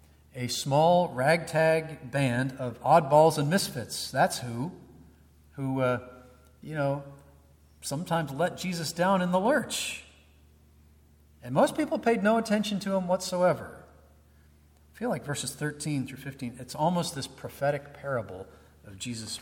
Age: 40-59